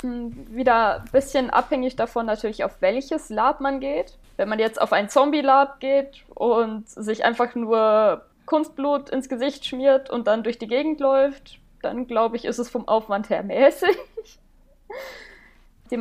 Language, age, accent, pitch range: German, 20-39, German, 215-265 Hz